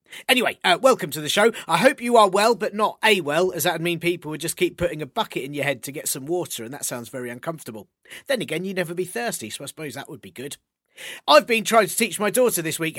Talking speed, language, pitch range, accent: 275 wpm, English, 145-200 Hz, British